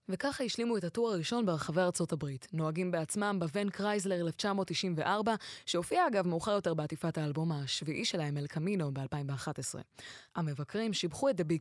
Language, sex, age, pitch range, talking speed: Hebrew, female, 20-39, 155-205 Hz, 140 wpm